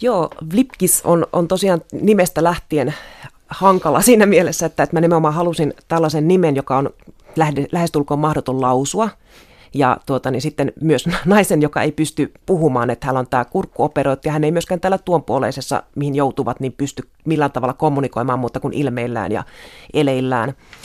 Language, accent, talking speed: Finnish, native, 160 wpm